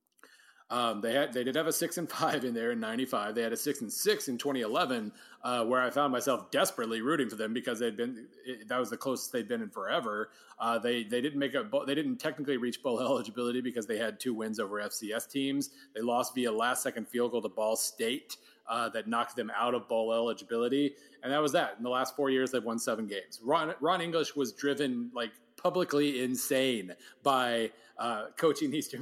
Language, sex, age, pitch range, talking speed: English, male, 30-49, 120-145 Hz, 215 wpm